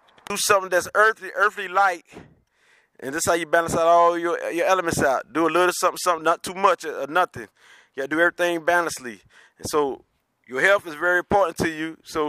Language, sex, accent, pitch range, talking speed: English, male, American, 160-190 Hz, 220 wpm